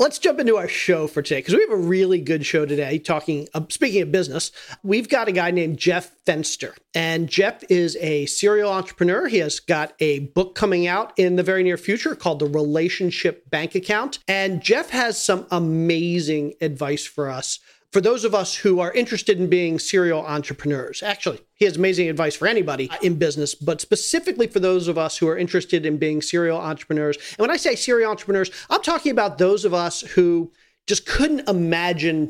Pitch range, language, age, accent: 160-195 Hz, English, 40-59, American